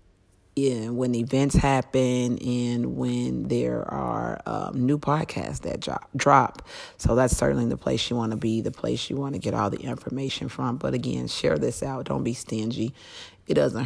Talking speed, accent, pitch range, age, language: 185 wpm, American, 110-125 Hz, 30-49, English